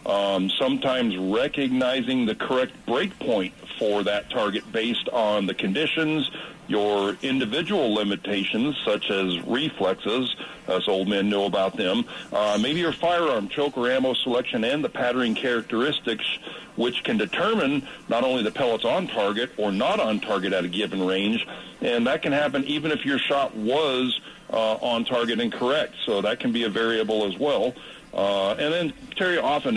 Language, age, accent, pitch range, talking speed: English, 50-69, American, 105-150 Hz, 165 wpm